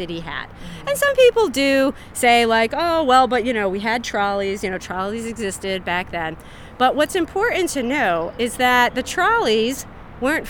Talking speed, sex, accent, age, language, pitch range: 185 wpm, female, American, 30-49, English, 205-285 Hz